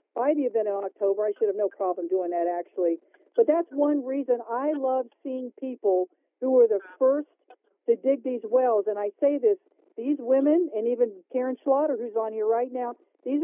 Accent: American